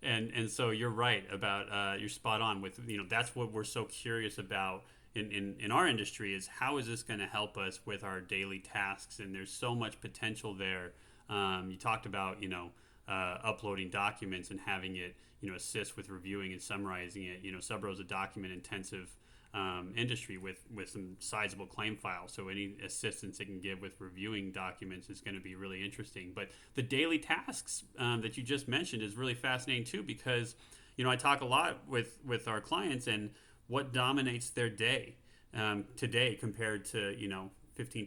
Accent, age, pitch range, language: American, 30-49, 100-120 Hz, English